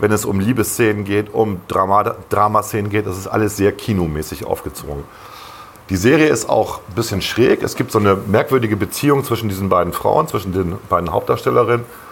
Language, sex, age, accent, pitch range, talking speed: German, male, 40-59, German, 100-125 Hz, 180 wpm